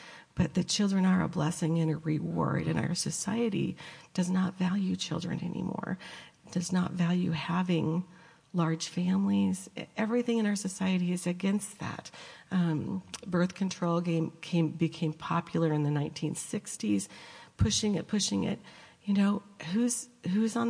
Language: English